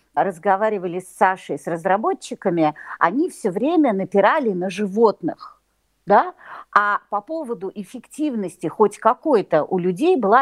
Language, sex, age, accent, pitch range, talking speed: Russian, female, 50-69, American, 180-255 Hz, 120 wpm